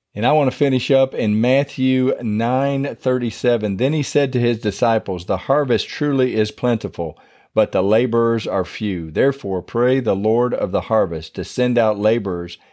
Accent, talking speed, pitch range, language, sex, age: American, 175 wpm, 95-120 Hz, English, male, 50-69